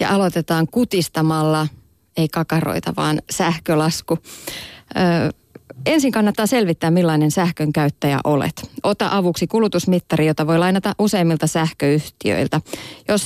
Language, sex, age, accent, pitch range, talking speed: Finnish, female, 30-49, native, 160-215 Hz, 105 wpm